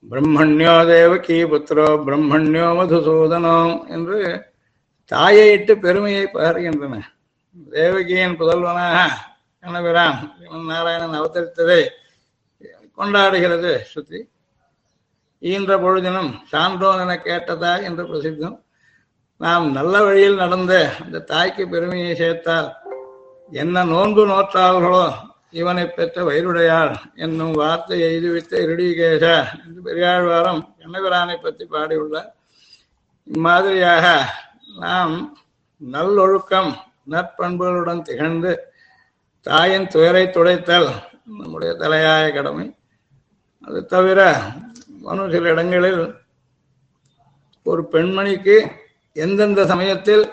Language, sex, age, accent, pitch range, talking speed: Tamil, male, 60-79, native, 160-190 Hz, 80 wpm